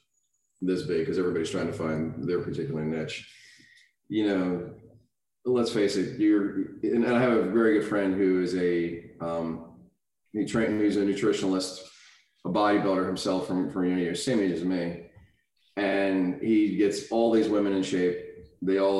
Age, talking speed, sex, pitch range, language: 30-49, 160 wpm, male, 85-105 Hz, English